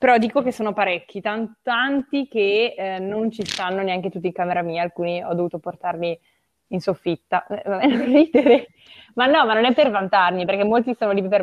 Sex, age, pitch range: female, 20-39, 180-235 Hz